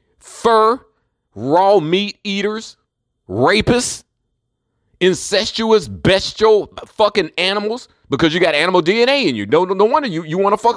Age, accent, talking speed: 40-59, American, 130 wpm